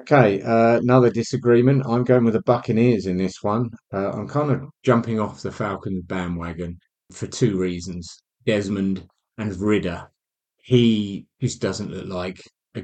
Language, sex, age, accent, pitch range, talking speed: English, male, 30-49, British, 95-120 Hz, 155 wpm